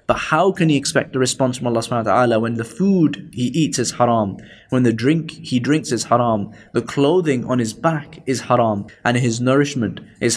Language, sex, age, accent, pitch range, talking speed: English, male, 10-29, British, 115-145 Hz, 215 wpm